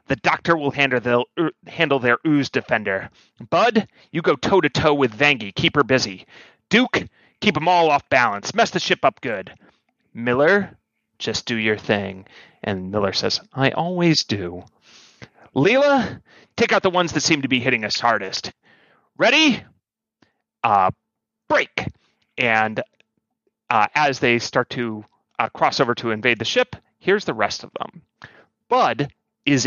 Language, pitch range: English, 120-170 Hz